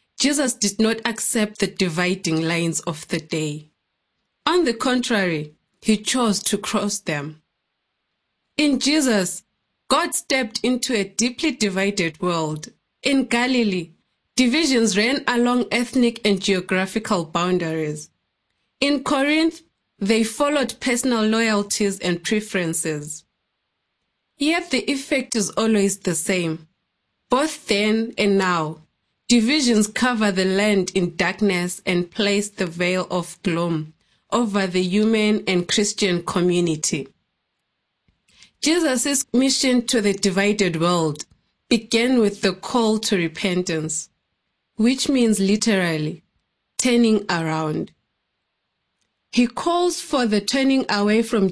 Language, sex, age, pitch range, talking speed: English, female, 20-39, 180-240 Hz, 115 wpm